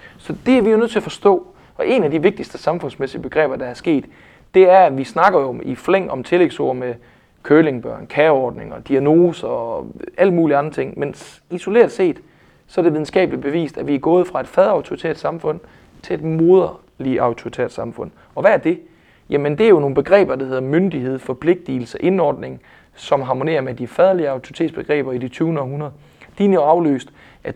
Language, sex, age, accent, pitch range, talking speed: Danish, male, 30-49, native, 135-185 Hz, 200 wpm